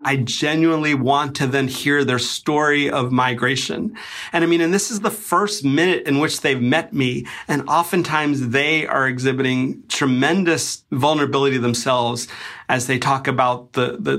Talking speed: 160 wpm